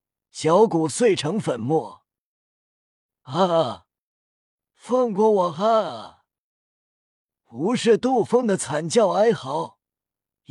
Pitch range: 150-220 Hz